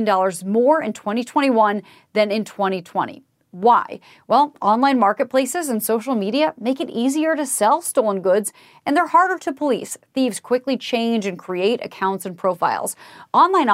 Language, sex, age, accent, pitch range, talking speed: English, female, 30-49, American, 205-290 Hz, 150 wpm